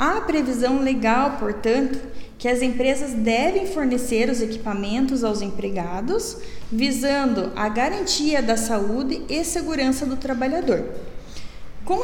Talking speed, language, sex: 115 wpm, Portuguese, female